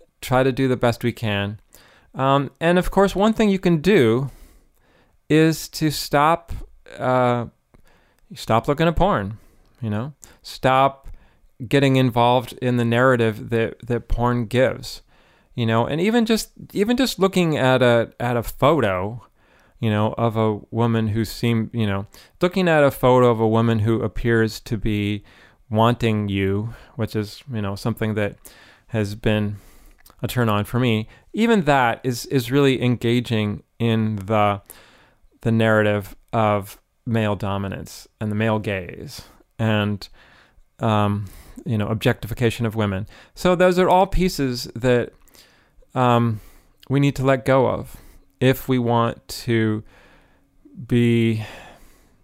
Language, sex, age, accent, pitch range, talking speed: English, male, 30-49, American, 105-130 Hz, 145 wpm